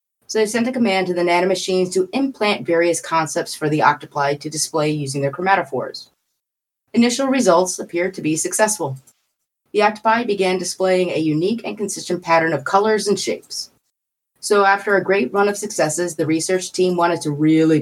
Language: English